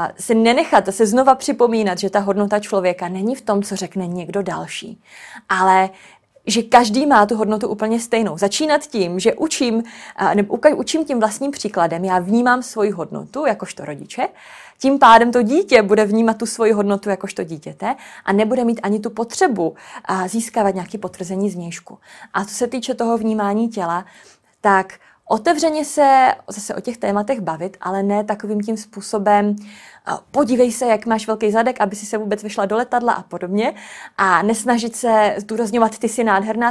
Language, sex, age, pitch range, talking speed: Czech, female, 30-49, 200-235 Hz, 165 wpm